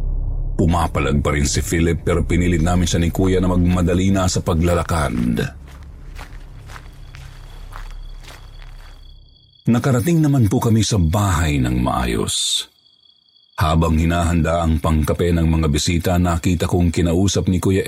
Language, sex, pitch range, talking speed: Filipino, male, 80-100 Hz, 120 wpm